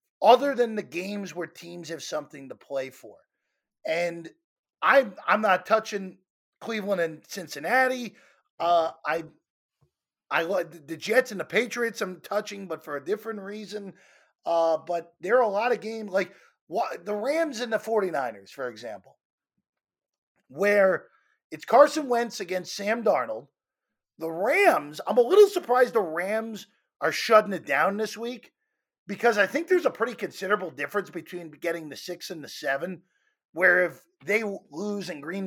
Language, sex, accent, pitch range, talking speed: English, male, American, 165-225 Hz, 155 wpm